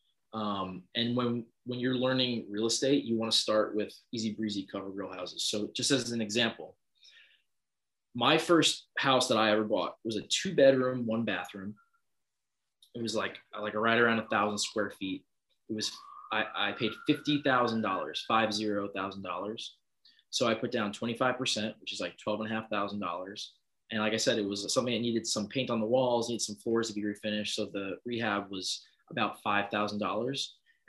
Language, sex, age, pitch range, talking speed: English, male, 20-39, 105-120 Hz, 195 wpm